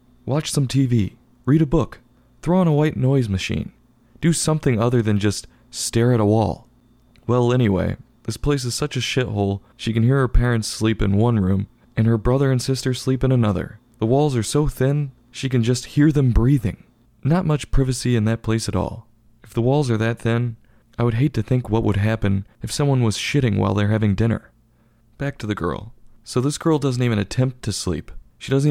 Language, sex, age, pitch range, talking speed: English, male, 20-39, 105-130 Hz, 210 wpm